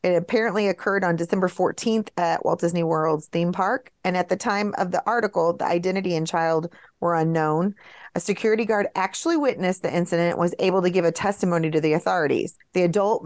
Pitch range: 160-195 Hz